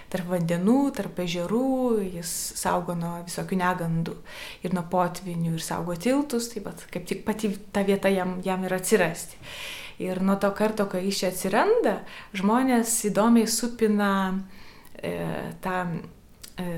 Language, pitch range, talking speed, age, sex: English, 180-220 Hz, 140 wpm, 20-39, female